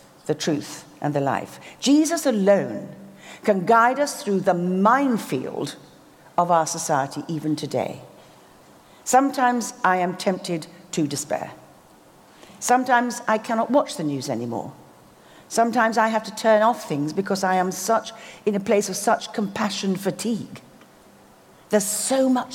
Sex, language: female, English